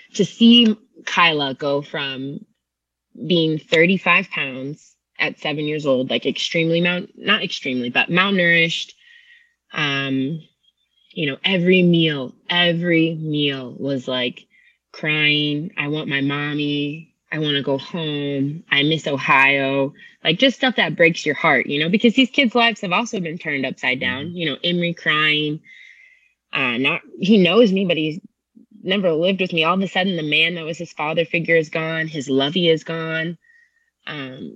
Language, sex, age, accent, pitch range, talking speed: English, female, 20-39, American, 150-190 Hz, 160 wpm